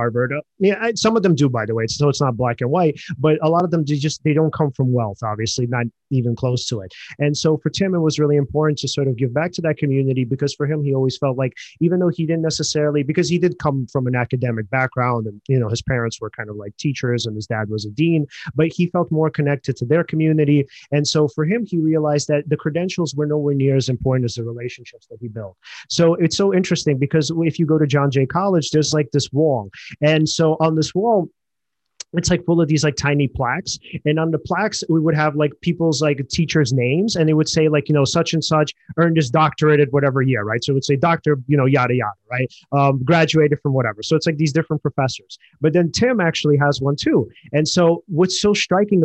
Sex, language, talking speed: male, English, 245 wpm